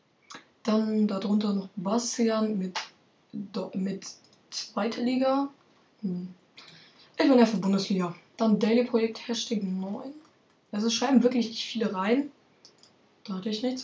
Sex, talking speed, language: female, 115 wpm, German